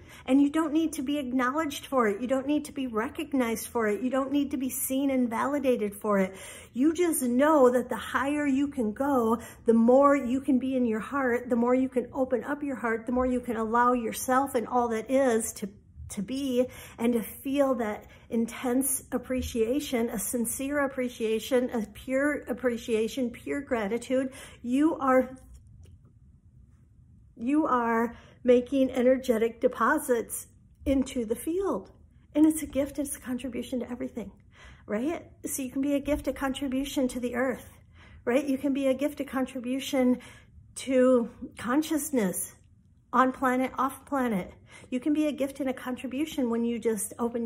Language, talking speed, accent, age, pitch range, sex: English, 170 wpm, American, 50-69, 235-270 Hz, female